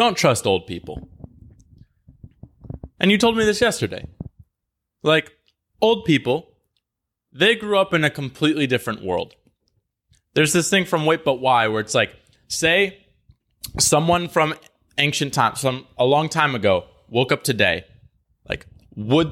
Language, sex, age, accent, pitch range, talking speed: English, male, 20-39, American, 115-155 Hz, 145 wpm